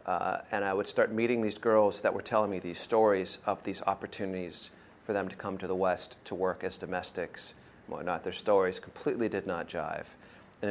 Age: 30-49